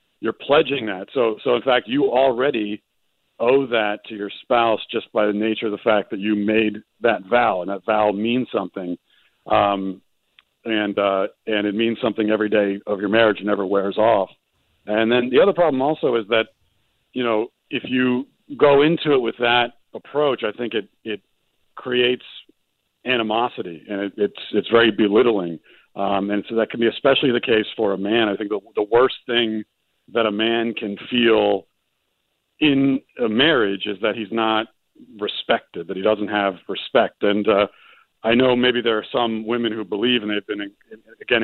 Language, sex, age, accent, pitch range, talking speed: English, male, 50-69, American, 105-120 Hz, 180 wpm